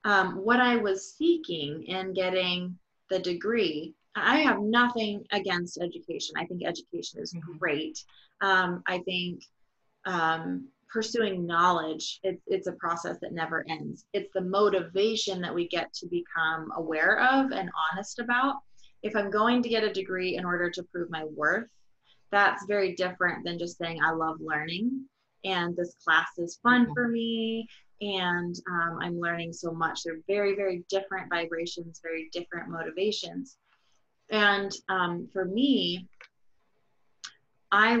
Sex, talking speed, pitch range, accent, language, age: female, 145 wpm, 175-210 Hz, American, English, 20-39